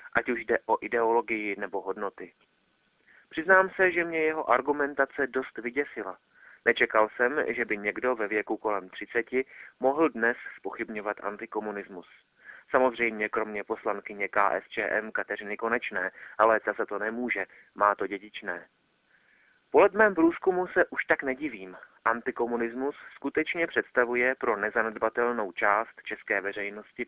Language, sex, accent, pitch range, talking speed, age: Czech, male, native, 105-145 Hz, 125 wpm, 30-49